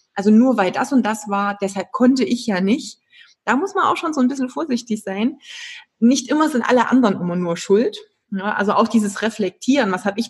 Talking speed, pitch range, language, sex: 220 wpm, 195-240 Hz, German, female